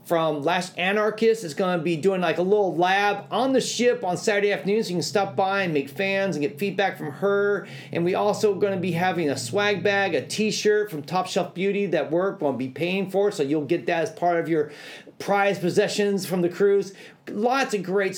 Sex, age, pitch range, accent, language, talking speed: male, 40-59, 165-205 Hz, American, English, 230 wpm